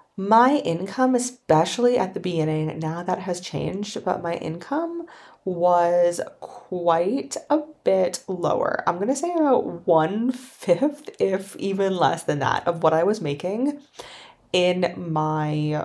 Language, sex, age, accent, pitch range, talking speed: English, female, 20-39, American, 175-255 Hz, 140 wpm